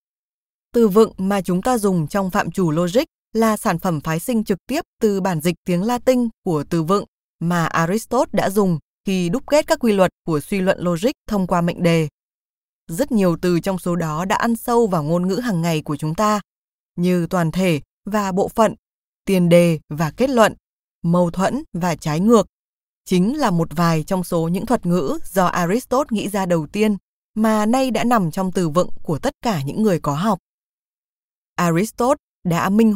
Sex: female